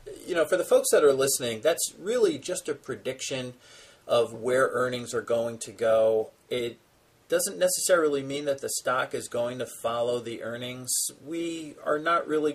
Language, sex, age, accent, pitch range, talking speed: English, male, 40-59, American, 120-160 Hz, 175 wpm